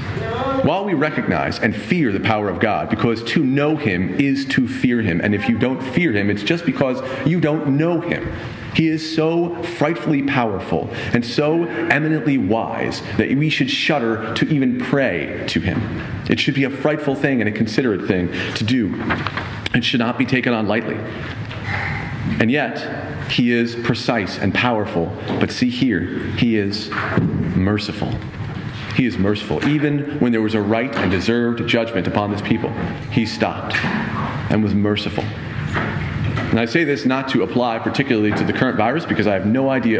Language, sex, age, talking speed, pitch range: English, male, 40-59, 175 wpm, 105-130 Hz